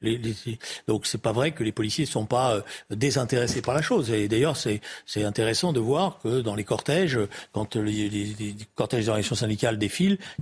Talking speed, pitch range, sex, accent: 200 wpm, 115-150 Hz, male, French